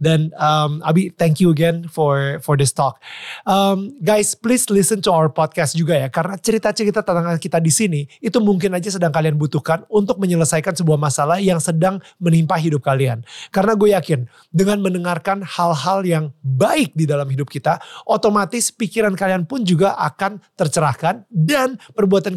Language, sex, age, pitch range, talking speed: Indonesian, male, 30-49, 145-190 Hz, 165 wpm